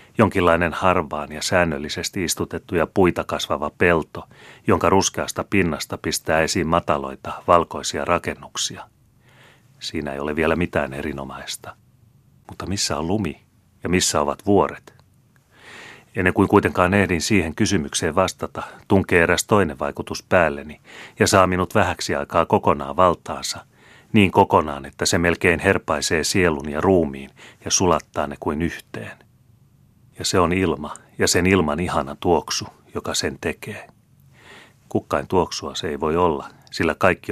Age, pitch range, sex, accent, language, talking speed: 30-49, 75-95 Hz, male, native, Finnish, 135 wpm